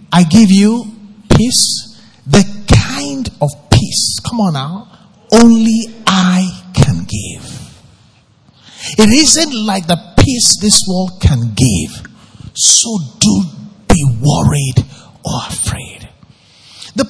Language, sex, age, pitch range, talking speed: English, male, 50-69, 140-220 Hz, 110 wpm